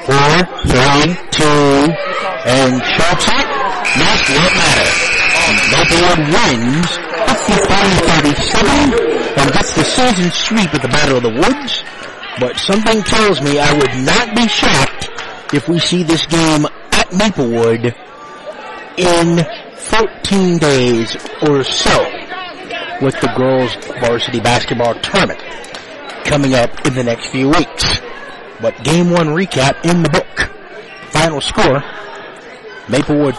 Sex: male